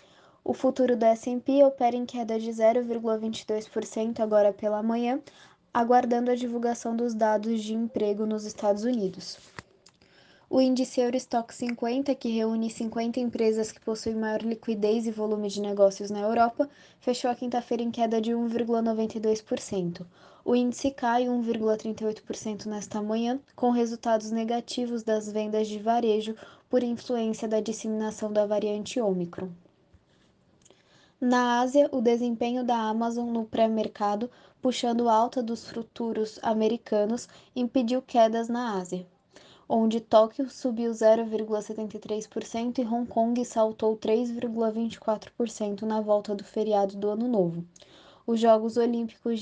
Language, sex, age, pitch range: Portuguese, female, 10-29, 215-240 Hz